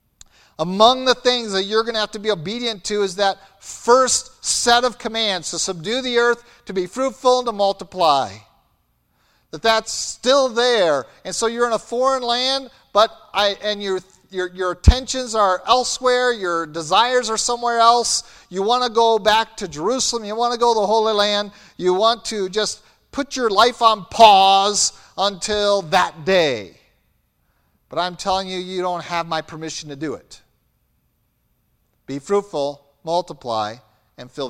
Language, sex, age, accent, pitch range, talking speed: English, male, 50-69, American, 175-225 Hz, 170 wpm